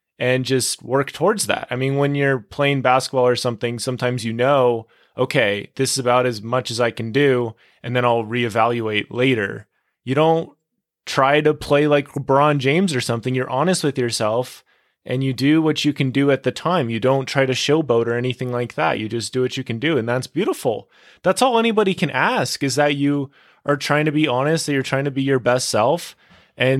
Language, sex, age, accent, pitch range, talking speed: English, male, 20-39, American, 110-135 Hz, 215 wpm